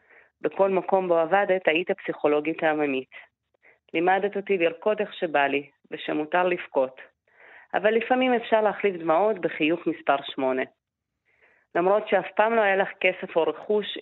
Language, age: Hebrew, 30-49